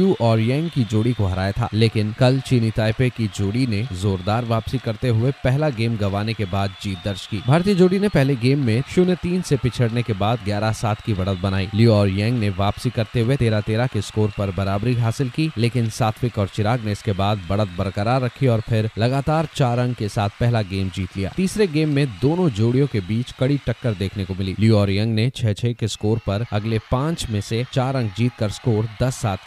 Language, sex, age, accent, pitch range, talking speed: Hindi, male, 30-49, native, 105-135 Hz, 225 wpm